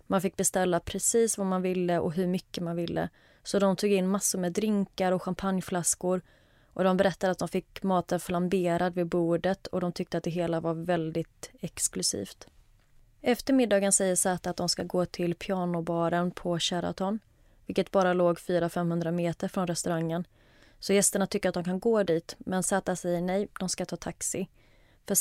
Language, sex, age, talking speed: Swedish, female, 20-39, 180 wpm